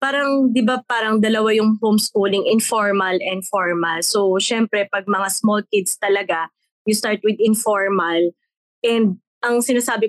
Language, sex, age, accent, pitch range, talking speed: English, female, 20-39, Filipino, 190-235 Hz, 145 wpm